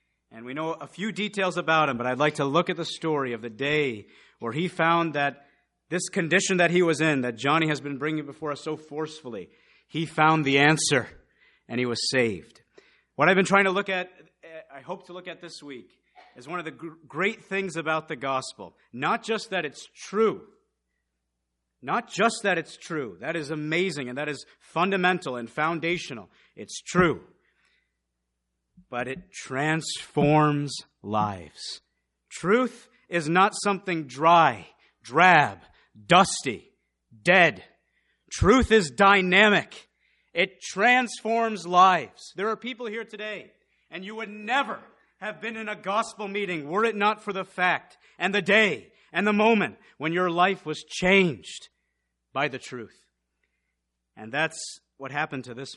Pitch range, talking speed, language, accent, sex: 135-190 Hz, 160 wpm, English, American, male